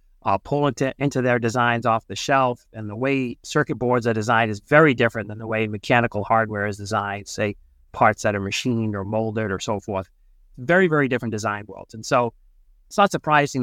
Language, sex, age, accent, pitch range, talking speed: English, male, 40-59, American, 105-135 Hz, 205 wpm